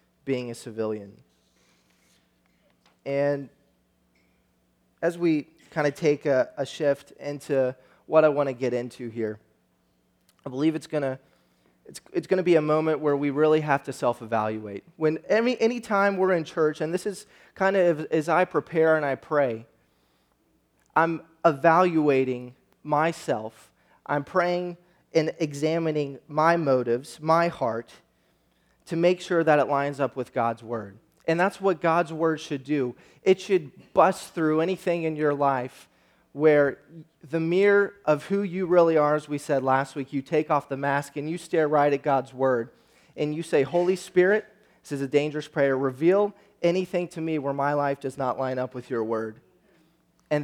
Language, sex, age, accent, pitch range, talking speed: English, male, 20-39, American, 135-165 Hz, 170 wpm